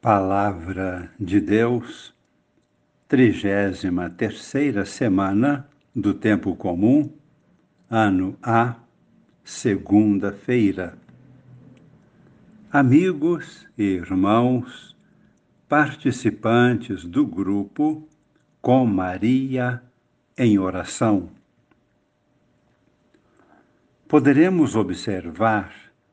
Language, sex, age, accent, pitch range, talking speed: Portuguese, male, 60-79, Brazilian, 105-145 Hz, 55 wpm